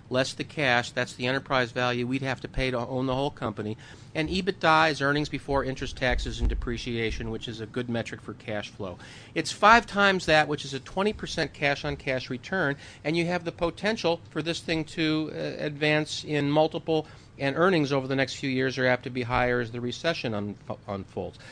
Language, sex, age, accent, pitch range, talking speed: English, male, 50-69, American, 125-150 Hz, 210 wpm